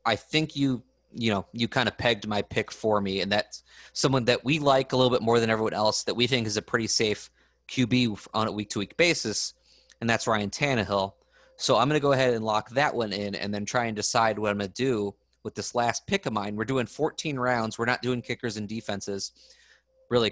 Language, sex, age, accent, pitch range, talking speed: English, male, 30-49, American, 110-150 Hz, 240 wpm